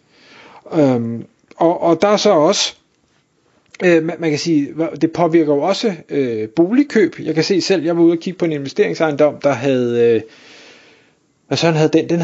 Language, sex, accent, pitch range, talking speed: Danish, male, native, 150-190 Hz, 180 wpm